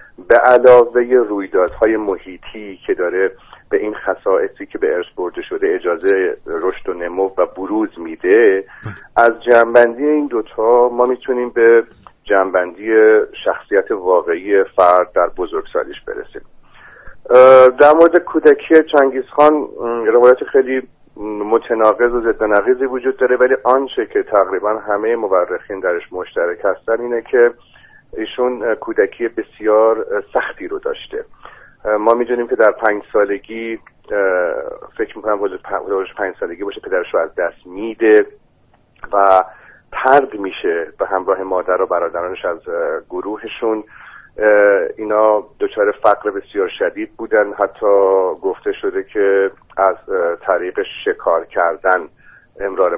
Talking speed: 120 wpm